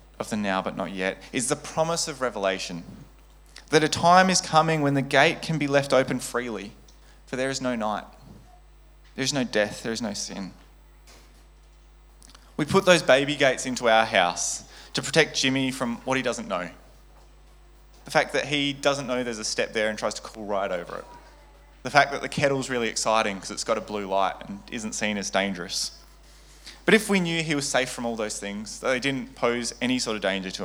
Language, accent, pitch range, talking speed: English, Australian, 110-150 Hz, 210 wpm